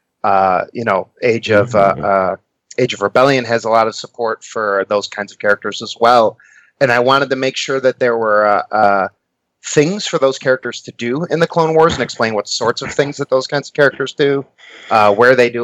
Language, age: English, 30-49